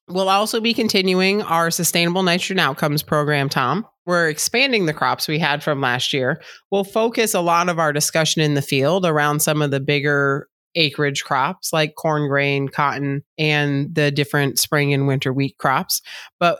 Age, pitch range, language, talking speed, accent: 30-49, 145-170 Hz, English, 175 wpm, American